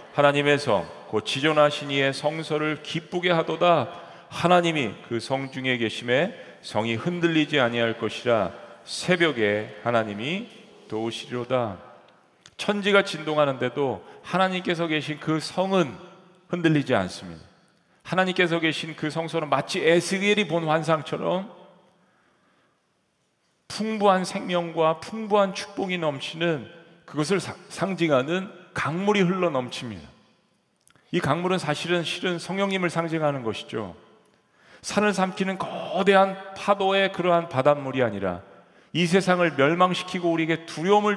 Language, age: Korean, 40-59